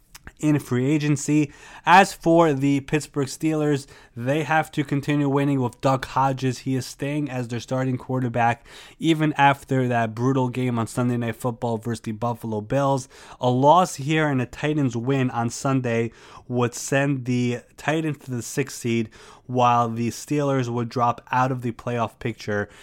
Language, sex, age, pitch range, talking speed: English, male, 20-39, 120-140 Hz, 165 wpm